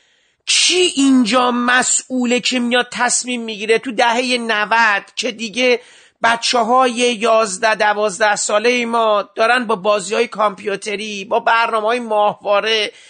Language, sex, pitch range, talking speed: Persian, male, 205-250 Hz, 120 wpm